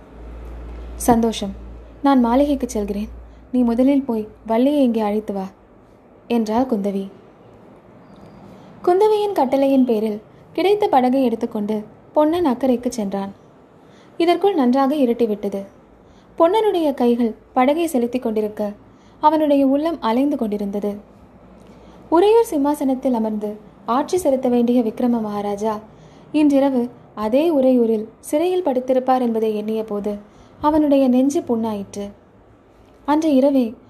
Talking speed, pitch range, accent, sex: 90 wpm, 215-280 Hz, native, female